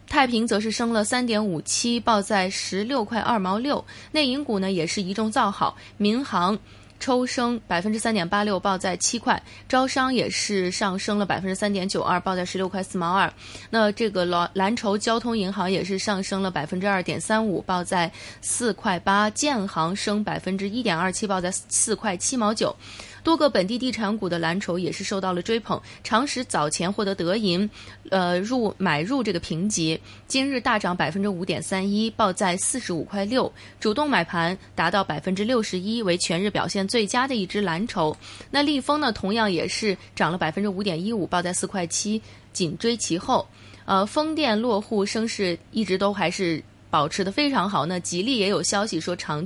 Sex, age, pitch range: female, 20-39, 185-230 Hz